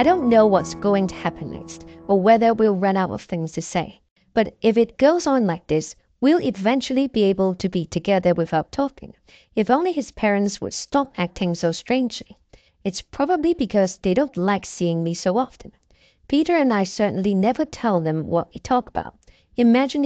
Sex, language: female, English